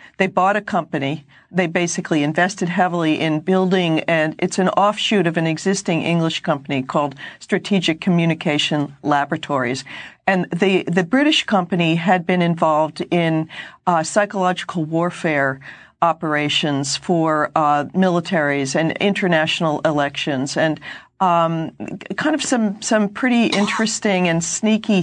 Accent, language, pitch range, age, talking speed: American, English, 160-210 Hz, 50-69, 125 wpm